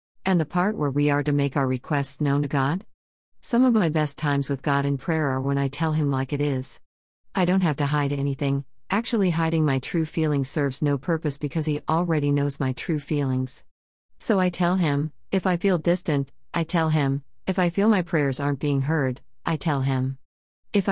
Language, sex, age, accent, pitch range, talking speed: English, female, 50-69, American, 135-170 Hz, 210 wpm